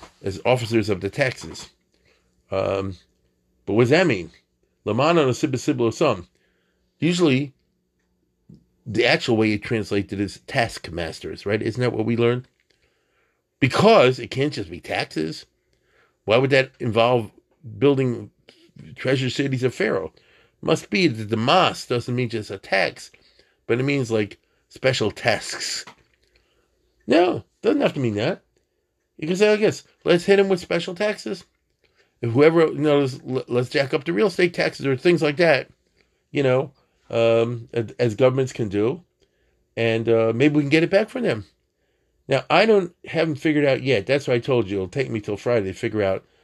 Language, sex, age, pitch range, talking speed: English, male, 50-69, 105-135 Hz, 165 wpm